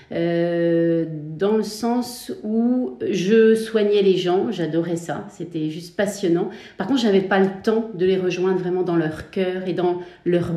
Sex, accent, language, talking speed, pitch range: female, French, French, 175 wpm, 170-195 Hz